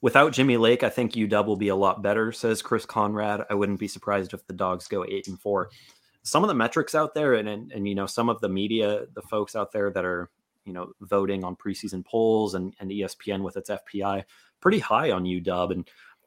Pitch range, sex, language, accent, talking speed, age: 95-120 Hz, male, English, American, 230 wpm, 30-49